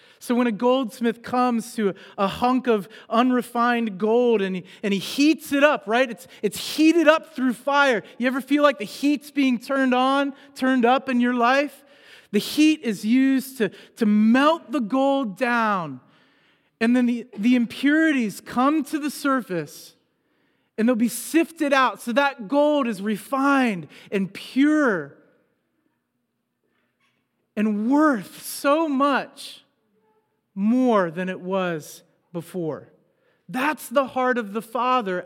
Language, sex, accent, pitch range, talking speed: English, male, American, 205-265 Hz, 145 wpm